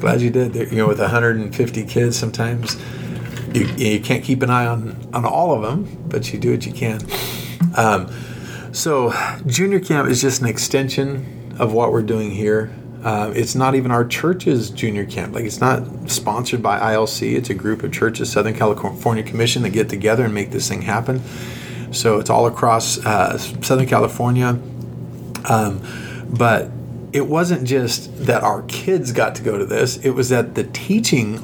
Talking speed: 180 wpm